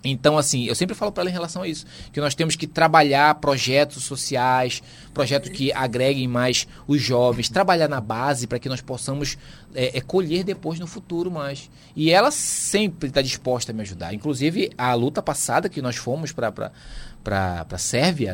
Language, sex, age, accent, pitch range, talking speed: Portuguese, male, 20-39, Brazilian, 130-185 Hz, 175 wpm